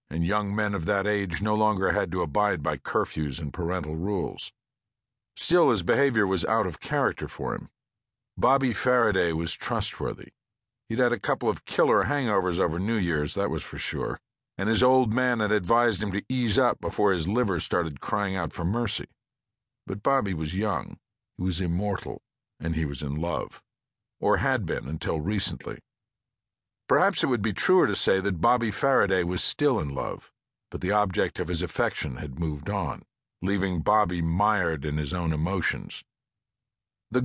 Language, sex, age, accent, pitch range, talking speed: English, male, 50-69, American, 85-115 Hz, 175 wpm